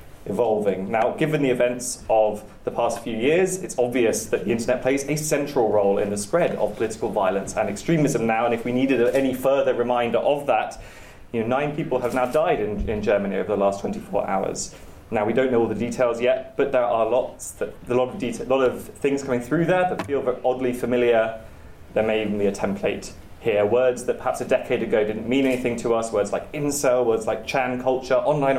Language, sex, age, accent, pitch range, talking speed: English, male, 20-39, British, 110-135 Hz, 225 wpm